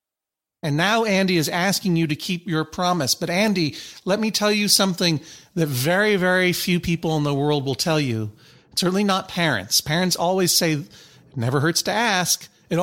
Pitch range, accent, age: 145-185 Hz, American, 40-59